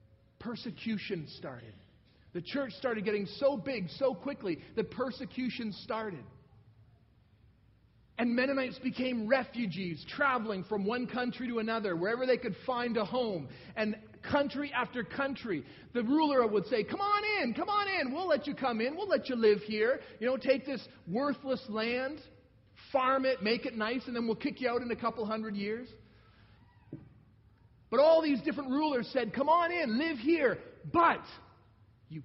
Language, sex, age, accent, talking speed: English, male, 40-59, American, 165 wpm